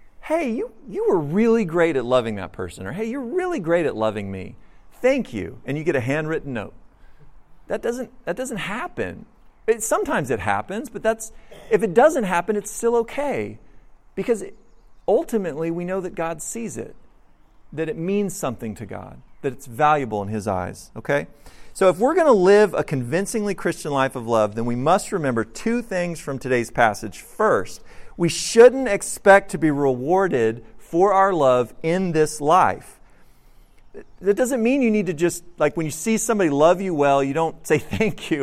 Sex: male